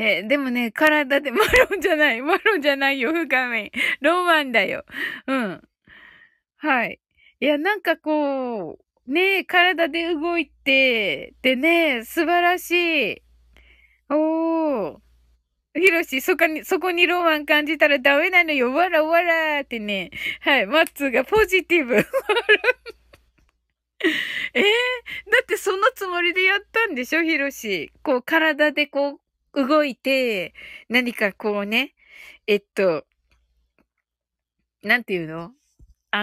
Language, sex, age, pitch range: Japanese, female, 20-39, 220-345 Hz